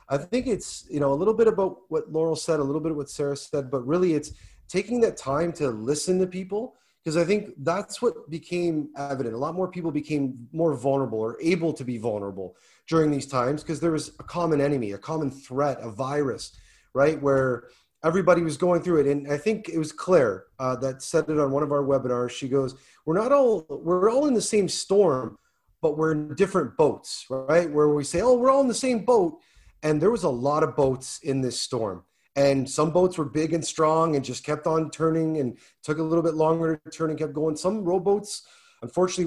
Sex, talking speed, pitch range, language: male, 225 wpm, 140-185 Hz, English